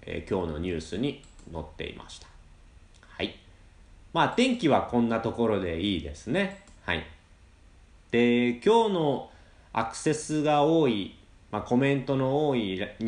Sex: male